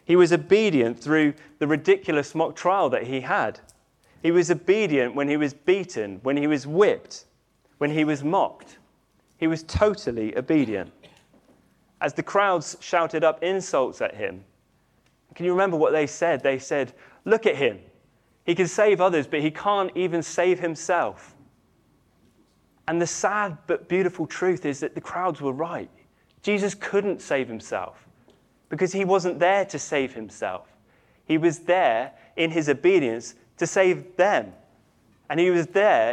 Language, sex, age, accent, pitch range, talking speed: English, male, 30-49, British, 135-180 Hz, 160 wpm